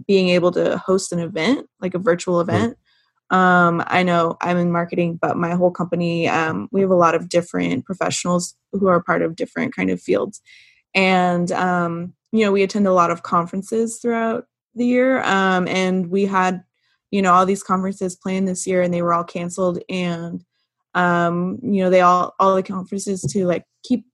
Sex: female